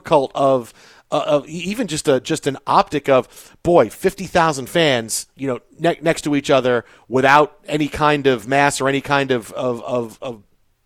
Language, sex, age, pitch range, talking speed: English, male, 40-59, 130-155 Hz, 180 wpm